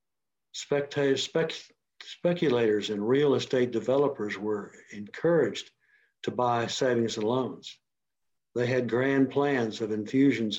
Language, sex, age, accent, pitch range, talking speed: English, male, 60-79, American, 115-140 Hz, 100 wpm